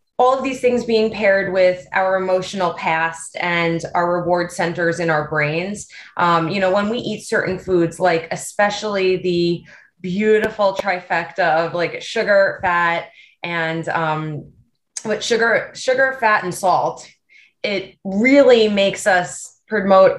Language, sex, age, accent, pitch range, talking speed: English, female, 20-39, American, 170-215 Hz, 140 wpm